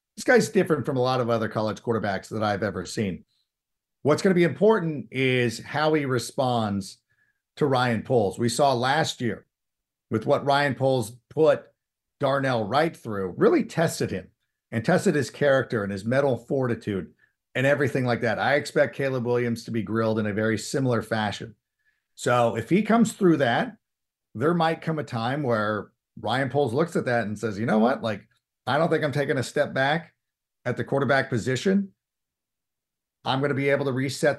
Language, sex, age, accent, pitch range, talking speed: English, male, 50-69, American, 115-145 Hz, 185 wpm